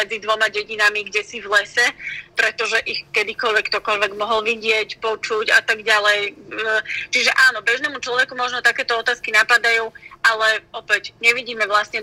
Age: 20-39